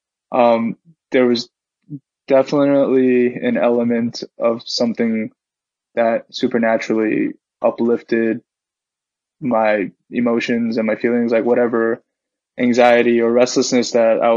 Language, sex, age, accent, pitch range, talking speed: English, male, 20-39, American, 115-125 Hz, 95 wpm